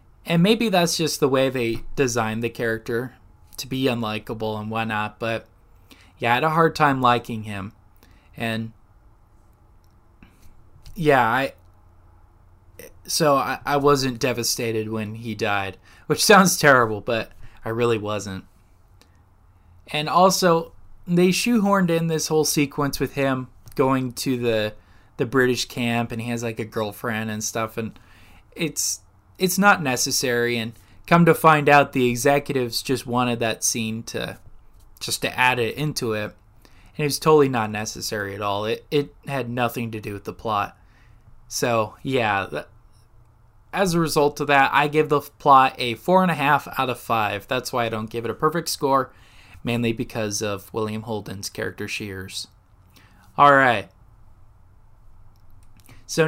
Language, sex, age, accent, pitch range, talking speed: English, male, 20-39, American, 105-135 Hz, 150 wpm